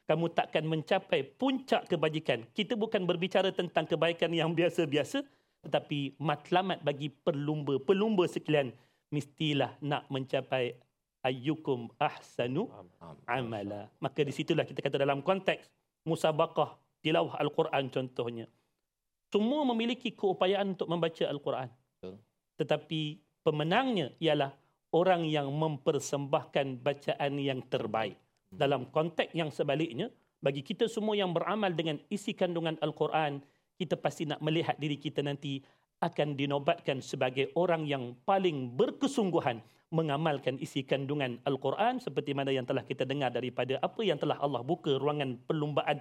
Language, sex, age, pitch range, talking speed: Malayalam, male, 40-59, 135-170 Hz, 125 wpm